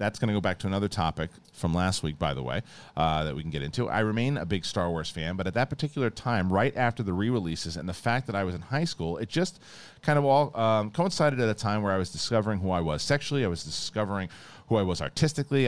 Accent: American